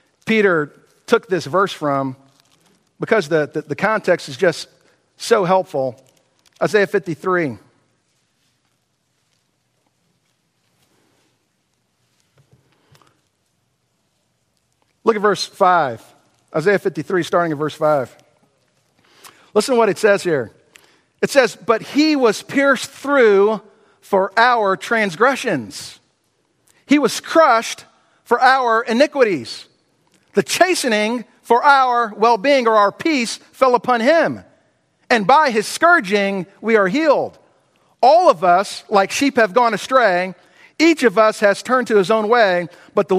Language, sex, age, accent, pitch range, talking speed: English, male, 50-69, American, 180-240 Hz, 120 wpm